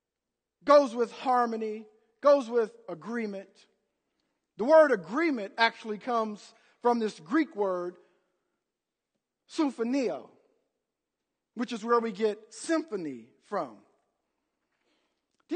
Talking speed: 95 wpm